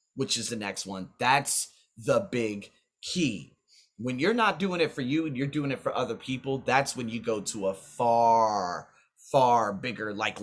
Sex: male